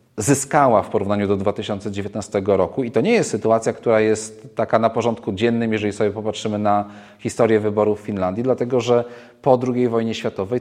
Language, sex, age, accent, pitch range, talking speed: Polish, male, 40-59, native, 105-120 Hz, 175 wpm